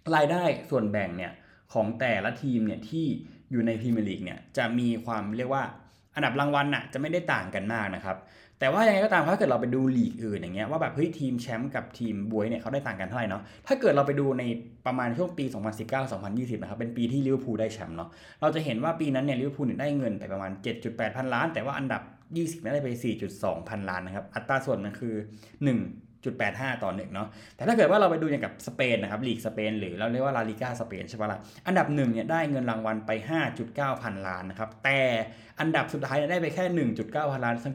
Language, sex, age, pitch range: Thai, male, 20-39, 110-140 Hz